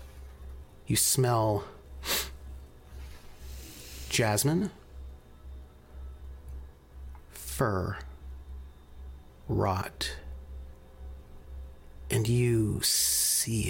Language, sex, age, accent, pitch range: English, male, 40-59, American, 65-110 Hz